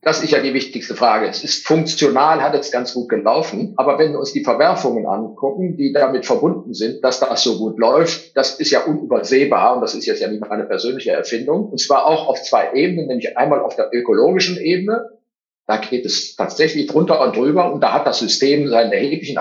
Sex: male